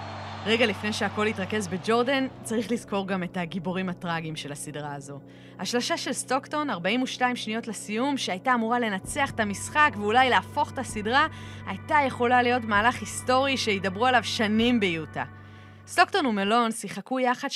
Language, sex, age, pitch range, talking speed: Hebrew, female, 20-39, 185-265 Hz, 145 wpm